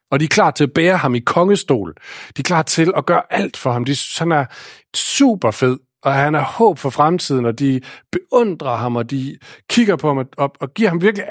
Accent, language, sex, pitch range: German, Danish, male, 125-180 Hz